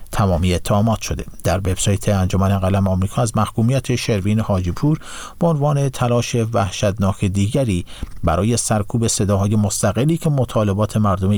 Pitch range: 95-120 Hz